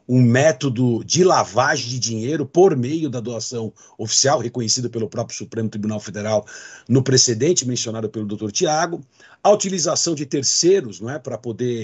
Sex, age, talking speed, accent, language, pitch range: male, 60-79, 150 wpm, Brazilian, Portuguese, 115-145 Hz